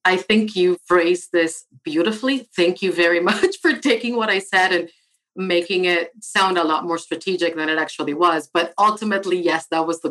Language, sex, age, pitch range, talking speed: English, female, 40-59, 155-195 Hz, 195 wpm